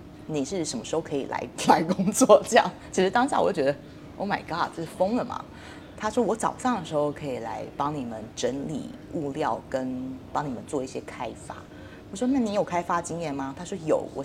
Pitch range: 145-200 Hz